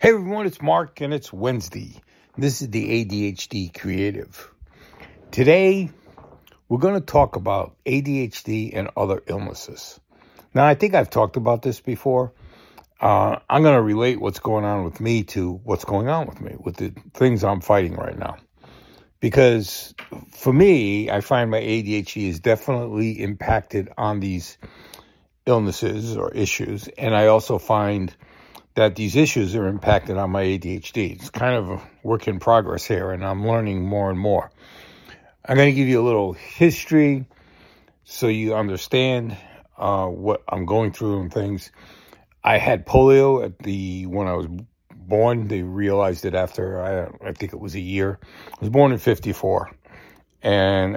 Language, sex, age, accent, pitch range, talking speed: English, male, 60-79, American, 95-125 Hz, 160 wpm